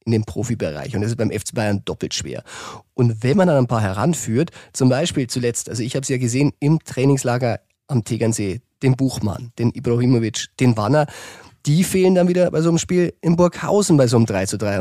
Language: German